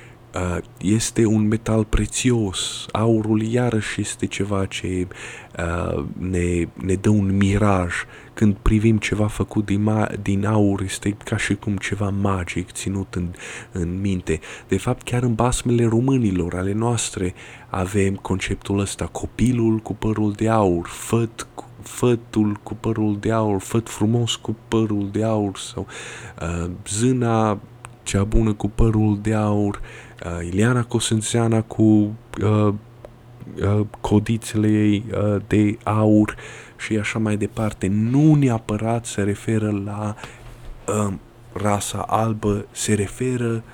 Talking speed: 125 wpm